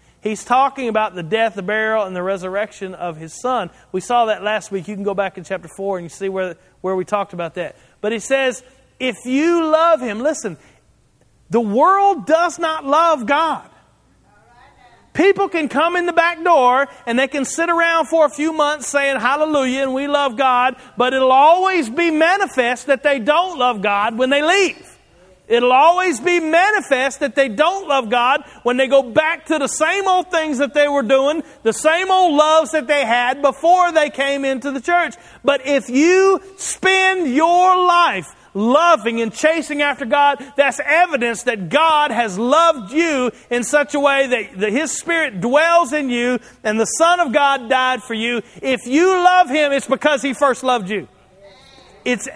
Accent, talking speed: American, 190 wpm